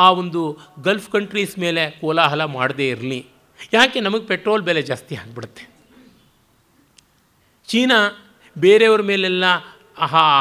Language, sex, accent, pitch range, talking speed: Kannada, male, native, 155-210 Hz, 105 wpm